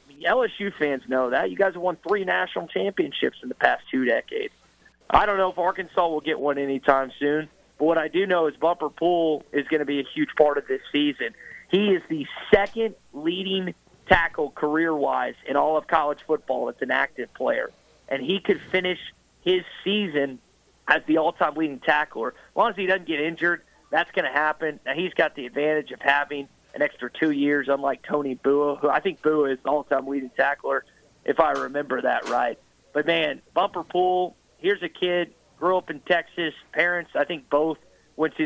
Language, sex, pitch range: English, male, 145-175 Hz